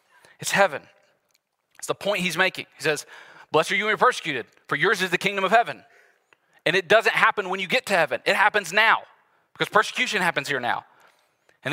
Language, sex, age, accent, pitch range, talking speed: English, male, 30-49, American, 170-210 Hz, 205 wpm